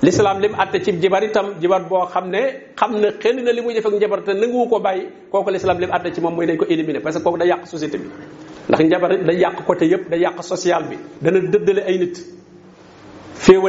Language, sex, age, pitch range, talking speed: French, male, 50-69, 180-225 Hz, 135 wpm